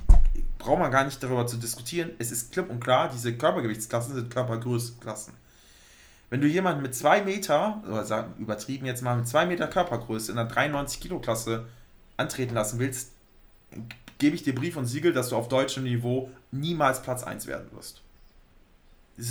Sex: male